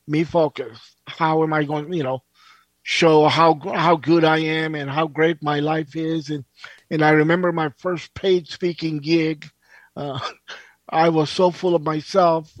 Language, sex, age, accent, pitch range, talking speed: English, male, 50-69, American, 145-170 Hz, 175 wpm